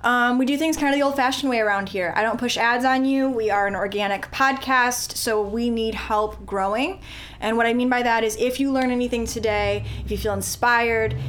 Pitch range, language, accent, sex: 200-255 Hz, English, American, female